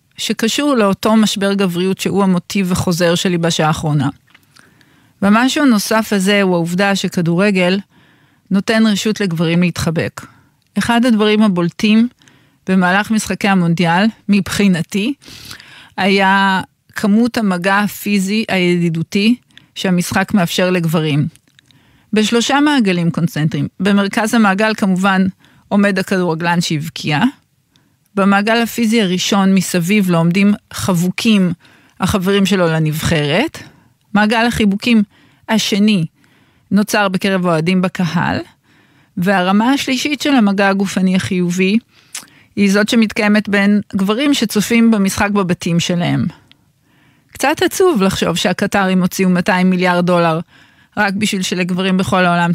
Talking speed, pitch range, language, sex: 100 wpm, 175-210 Hz, Hebrew, female